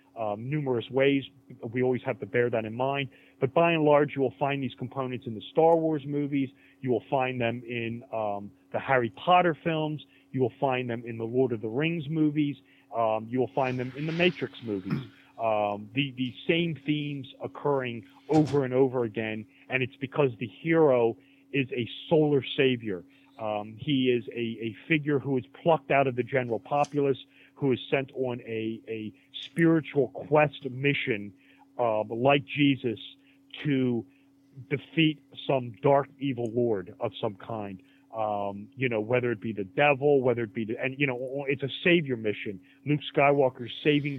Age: 40-59